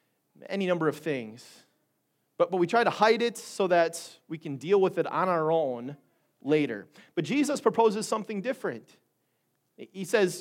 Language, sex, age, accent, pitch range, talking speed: English, male, 30-49, American, 155-210 Hz, 165 wpm